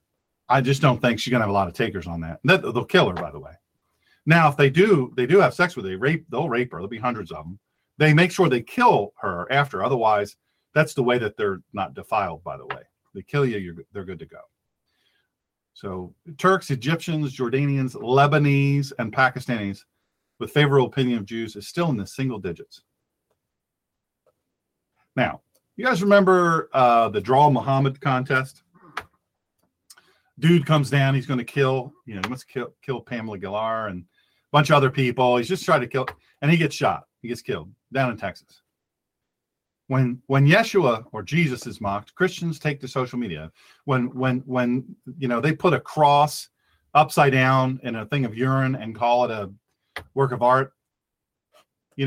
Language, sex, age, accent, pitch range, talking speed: English, male, 40-59, American, 125-155 Hz, 185 wpm